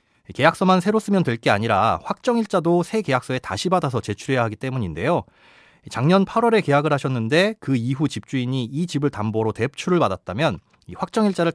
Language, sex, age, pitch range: Korean, male, 30-49, 115-165 Hz